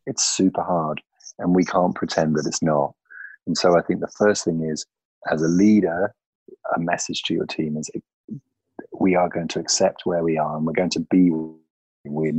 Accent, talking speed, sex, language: British, 200 wpm, male, English